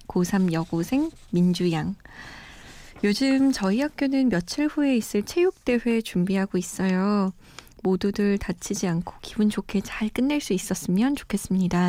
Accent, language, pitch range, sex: native, Korean, 185-250 Hz, female